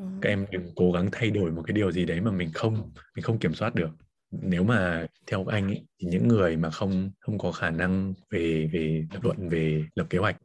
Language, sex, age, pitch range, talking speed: Vietnamese, male, 20-39, 85-110 Hz, 230 wpm